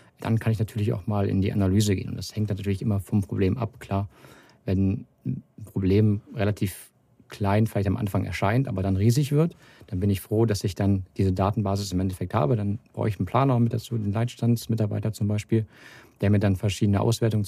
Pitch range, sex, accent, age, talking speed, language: 100-115 Hz, male, German, 50-69, 210 wpm, German